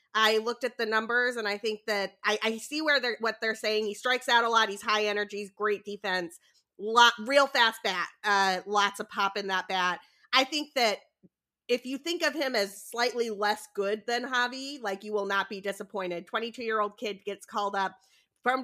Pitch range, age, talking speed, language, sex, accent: 200-245 Hz, 30-49, 215 wpm, English, female, American